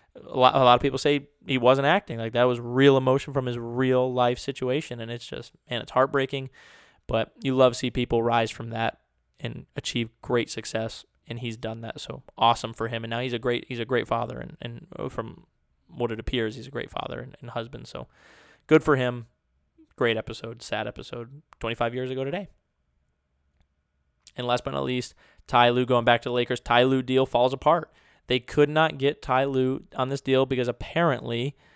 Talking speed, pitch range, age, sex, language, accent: 205 wpm, 115-135 Hz, 20-39, male, English, American